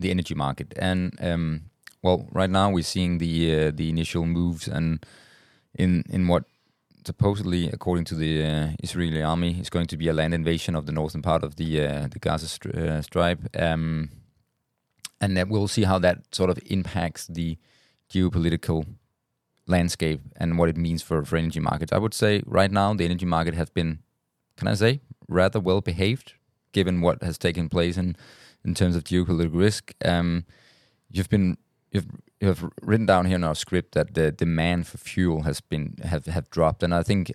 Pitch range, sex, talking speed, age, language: 80-95 Hz, male, 190 wpm, 20-39, English